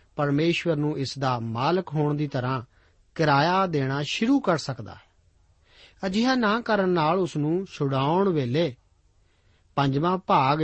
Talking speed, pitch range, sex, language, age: 135 wpm, 115-170 Hz, male, Punjabi, 40-59